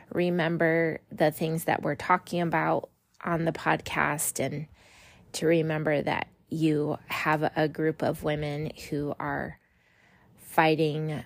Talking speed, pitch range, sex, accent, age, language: 125 wpm, 155-180 Hz, female, American, 20-39, English